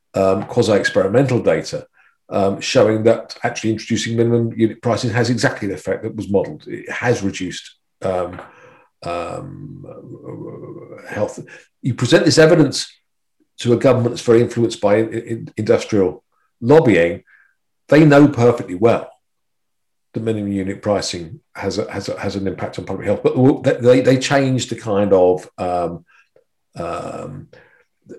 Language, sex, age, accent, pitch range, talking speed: English, male, 50-69, British, 105-145 Hz, 140 wpm